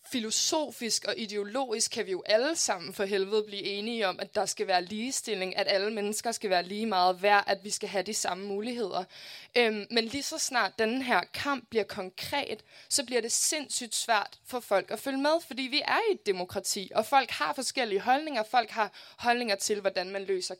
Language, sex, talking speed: Danish, female, 205 wpm